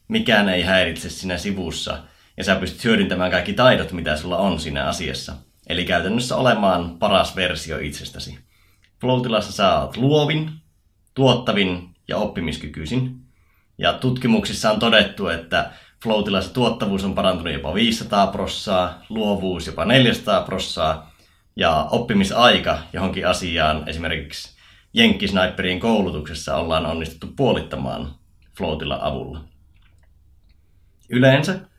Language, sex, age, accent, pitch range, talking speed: Finnish, male, 30-49, native, 80-100 Hz, 110 wpm